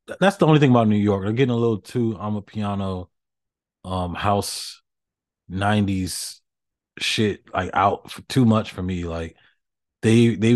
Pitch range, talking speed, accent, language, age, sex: 90-110 Hz, 165 wpm, American, English, 20-39, male